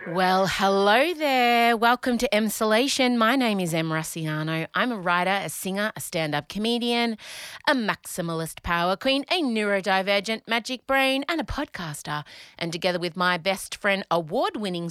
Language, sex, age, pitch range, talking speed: English, female, 30-49, 180-255 Hz, 150 wpm